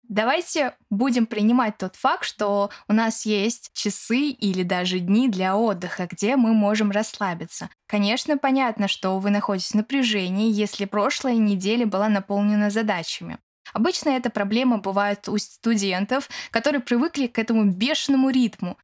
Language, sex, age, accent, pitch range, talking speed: Russian, female, 10-29, native, 195-250 Hz, 140 wpm